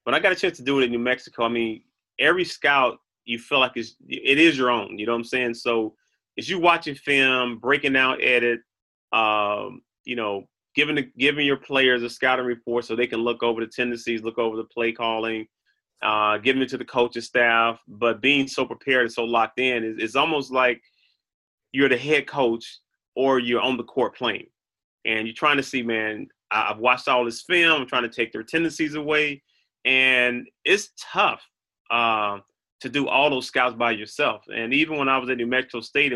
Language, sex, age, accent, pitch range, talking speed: English, male, 30-49, American, 115-145 Hz, 210 wpm